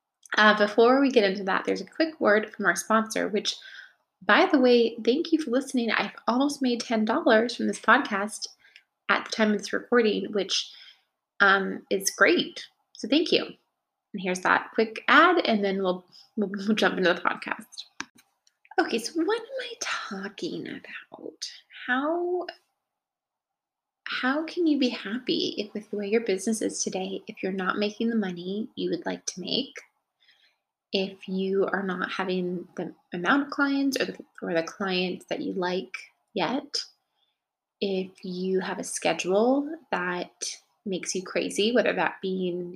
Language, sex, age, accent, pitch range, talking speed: English, female, 20-39, American, 185-260 Hz, 165 wpm